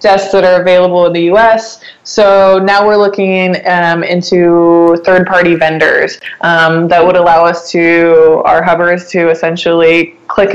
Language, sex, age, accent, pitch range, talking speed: English, female, 20-39, American, 170-200 Hz, 155 wpm